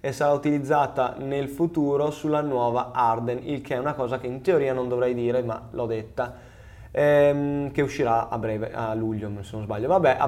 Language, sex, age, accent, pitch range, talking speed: Italian, male, 20-39, native, 125-165 Hz, 200 wpm